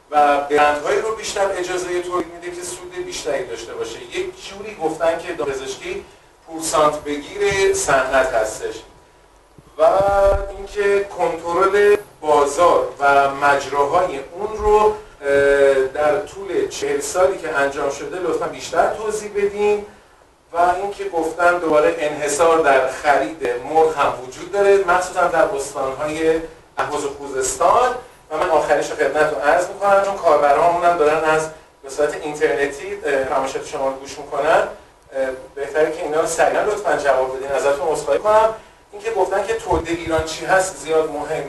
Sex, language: male, Persian